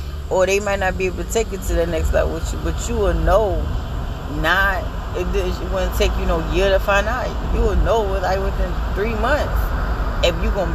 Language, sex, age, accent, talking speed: English, female, 30-49, American, 220 wpm